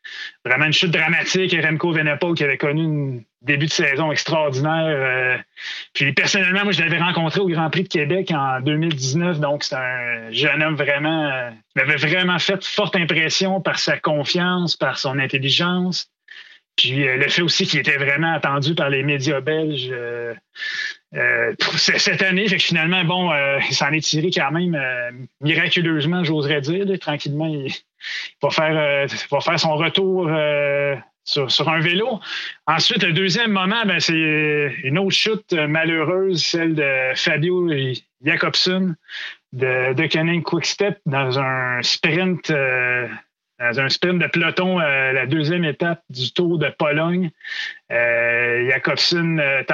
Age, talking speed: 30-49, 160 wpm